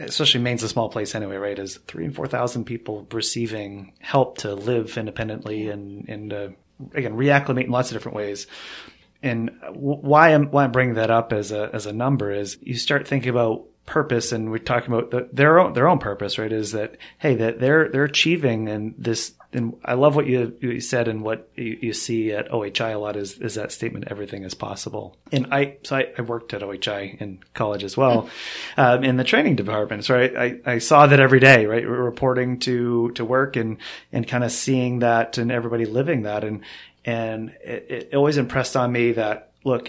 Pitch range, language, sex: 110-125 Hz, English, male